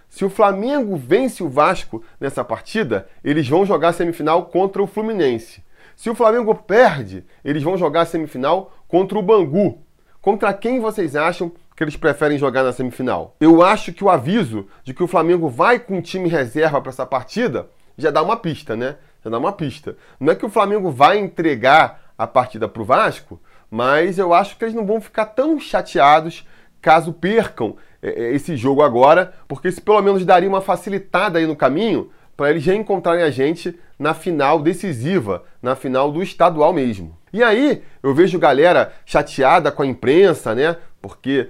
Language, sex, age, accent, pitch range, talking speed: Portuguese, male, 20-39, Brazilian, 150-205 Hz, 180 wpm